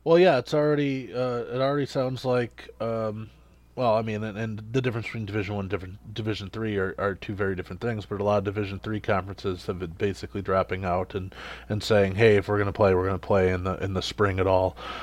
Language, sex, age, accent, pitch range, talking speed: English, male, 20-39, American, 100-120 Hz, 230 wpm